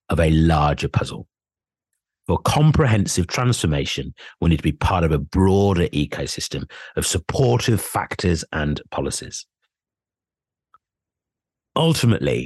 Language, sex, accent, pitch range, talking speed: English, male, British, 85-120 Hz, 105 wpm